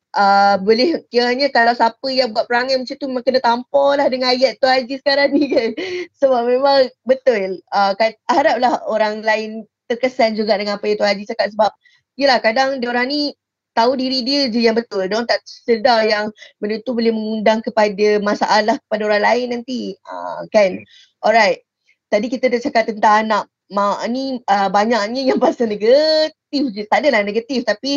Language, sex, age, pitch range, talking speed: Malay, female, 20-39, 205-260 Hz, 180 wpm